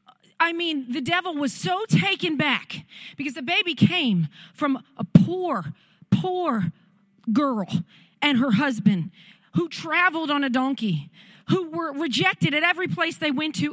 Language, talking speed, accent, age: English, 150 wpm, American, 40-59